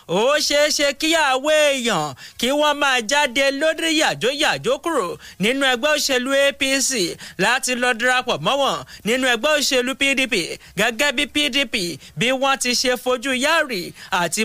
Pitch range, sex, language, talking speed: 225-285 Hz, male, English, 155 wpm